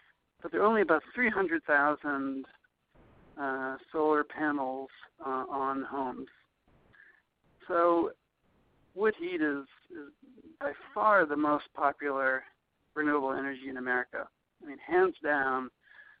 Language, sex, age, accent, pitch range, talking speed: English, male, 60-79, American, 140-185 Hz, 105 wpm